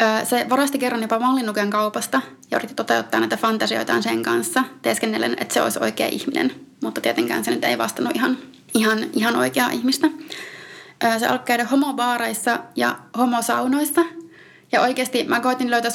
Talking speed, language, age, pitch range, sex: 150 wpm, Finnish, 20-39, 205-260 Hz, female